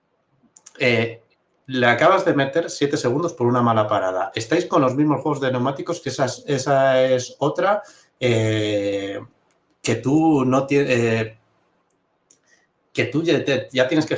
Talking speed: 145 wpm